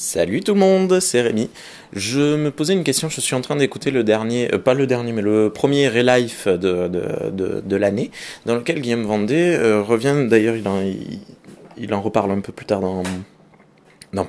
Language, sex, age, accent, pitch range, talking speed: French, male, 20-39, French, 105-145 Hz, 210 wpm